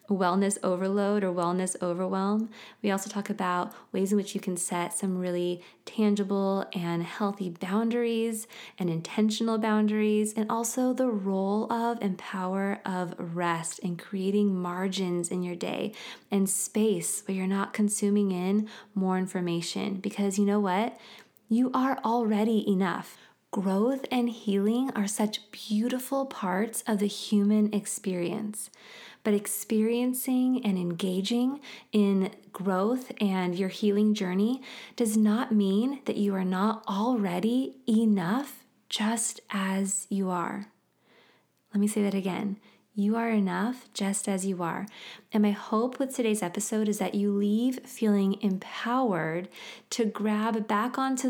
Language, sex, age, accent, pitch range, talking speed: English, female, 20-39, American, 190-225 Hz, 140 wpm